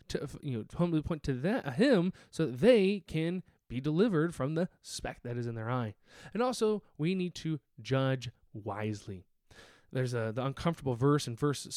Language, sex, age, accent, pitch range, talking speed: English, male, 20-39, American, 125-160 Hz, 185 wpm